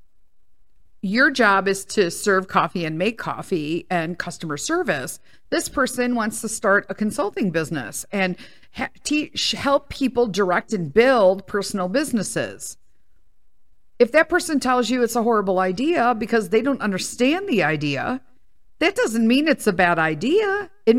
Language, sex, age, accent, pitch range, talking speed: English, female, 50-69, American, 190-275 Hz, 145 wpm